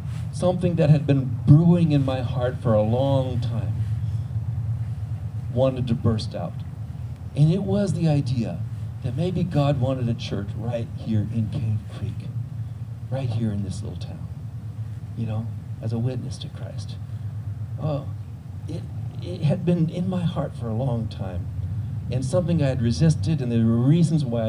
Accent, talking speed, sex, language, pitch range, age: American, 165 wpm, male, English, 110-130 Hz, 50-69